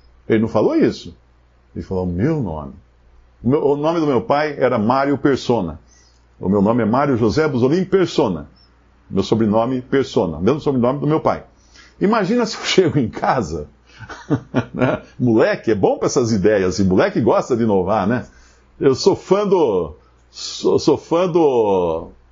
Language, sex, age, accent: Portuguese, male, 60-79, Brazilian